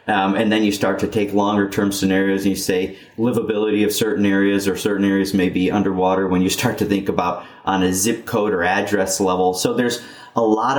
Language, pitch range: English, 100-115 Hz